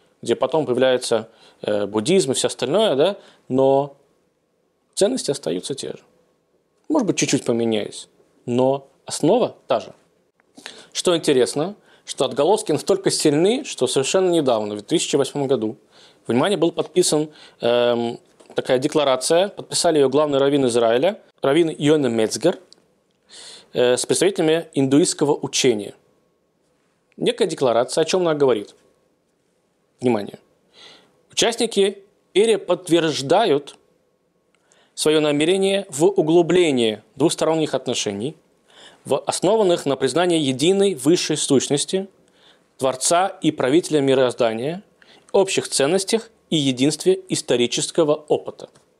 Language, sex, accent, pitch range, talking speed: Russian, male, native, 130-180 Hz, 105 wpm